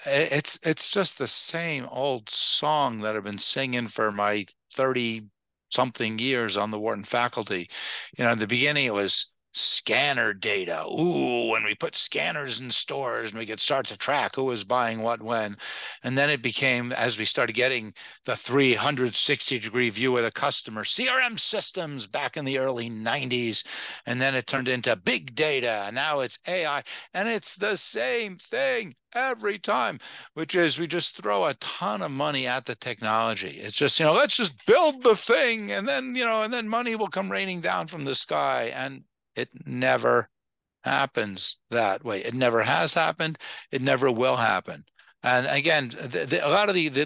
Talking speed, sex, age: 185 wpm, male, 50-69